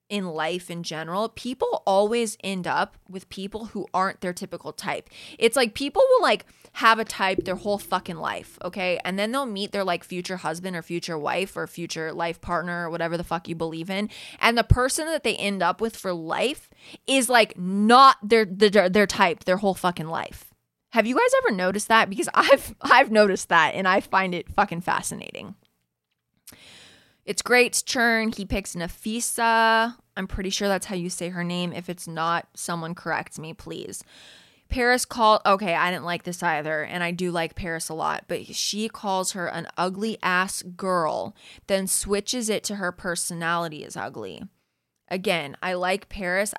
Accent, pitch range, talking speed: American, 170-210 Hz, 185 wpm